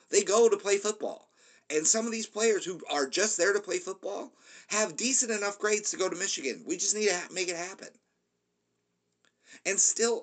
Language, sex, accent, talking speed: English, male, American, 200 wpm